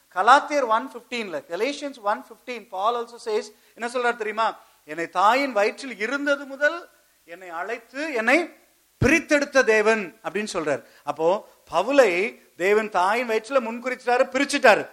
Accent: Indian